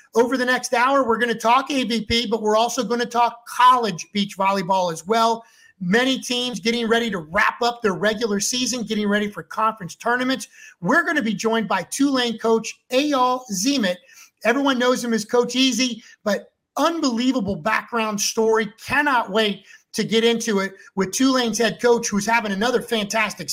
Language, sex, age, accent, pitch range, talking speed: English, male, 30-49, American, 200-250 Hz, 175 wpm